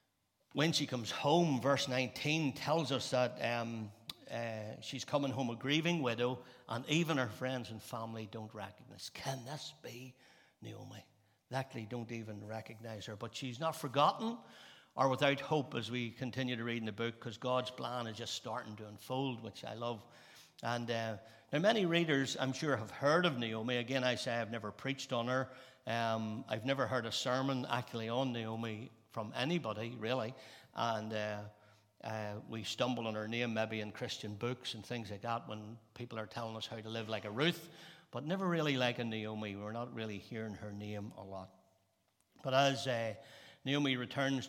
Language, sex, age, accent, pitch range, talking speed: English, male, 60-79, Irish, 110-130 Hz, 185 wpm